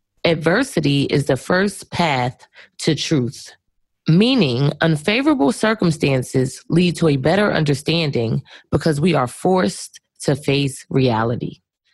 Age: 30-49